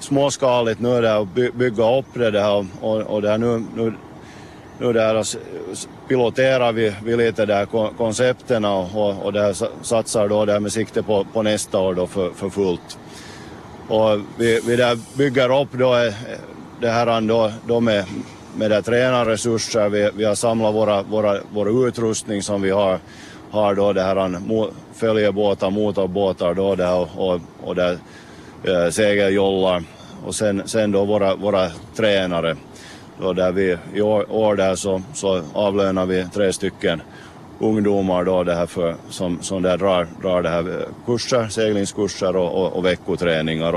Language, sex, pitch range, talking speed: Swedish, male, 95-115 Hz, 150 wpm